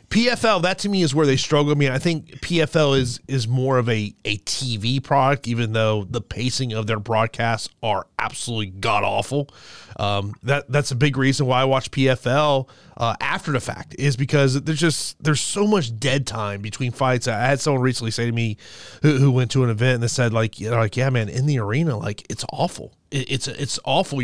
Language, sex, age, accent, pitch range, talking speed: English, male, 30-49, American, 125-150 Hz, 220 wpm